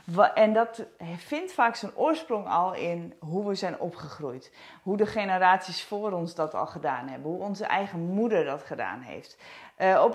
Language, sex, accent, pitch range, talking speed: Dutch, female, Dutch, 170-215 Hz, 175 wpm